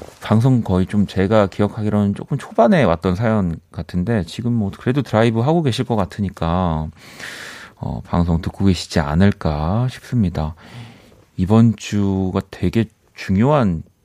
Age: 40-59